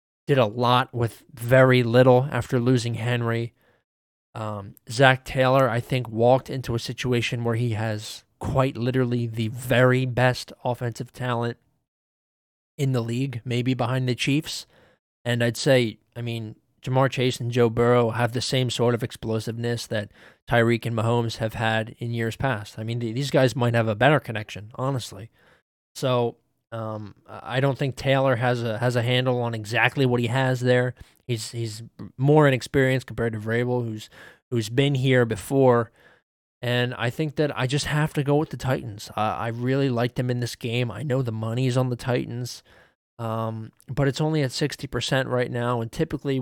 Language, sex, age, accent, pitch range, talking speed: English, male, 20-39, American, 115-130 Hz, 175 wpm